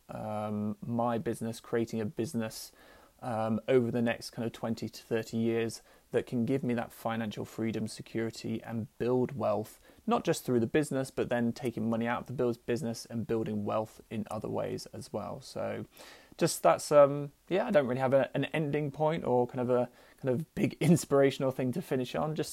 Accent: British